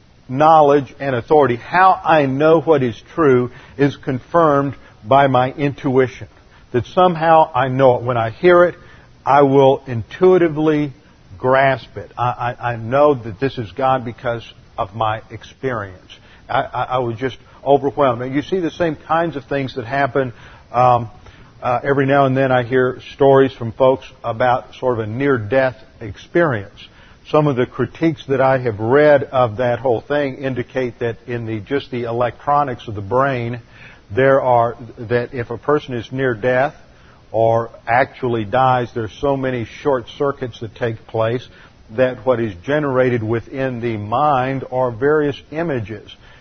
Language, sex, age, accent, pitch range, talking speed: English, male, 50-69, American, 120-140 Hz, 165 wpm